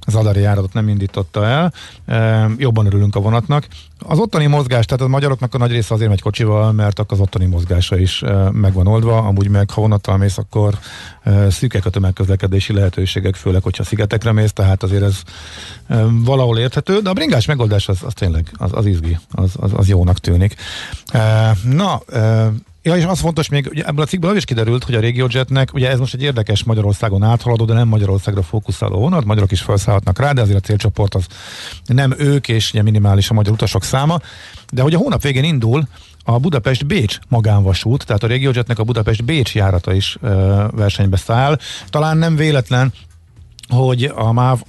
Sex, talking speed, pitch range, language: male, 180 wpm, 100-120 Hz, Hungarian